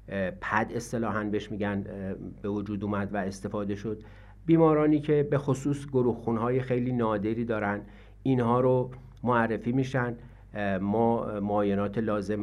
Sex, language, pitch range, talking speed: male, Persian, 105-130 Hz, 125 wpm